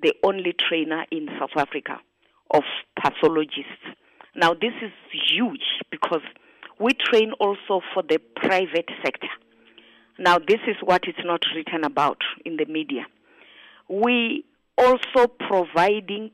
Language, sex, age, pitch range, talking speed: English, female, 40-59, 165-230 Hz, 120 wpm